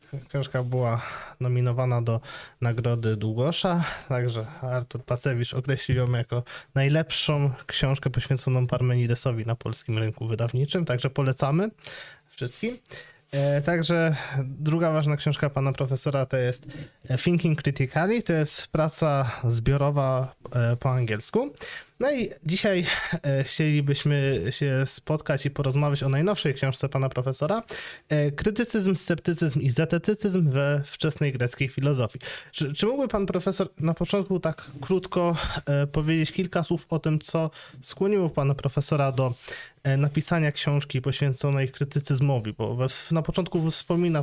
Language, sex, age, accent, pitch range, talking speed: Polish, male, 20-39, native, 135-165 Hz, 120 wpm